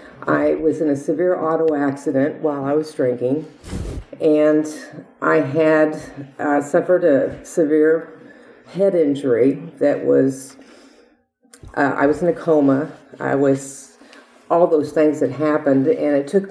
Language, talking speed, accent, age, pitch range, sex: English, 140 wpm, American, 50-69, 140-160 Hz, female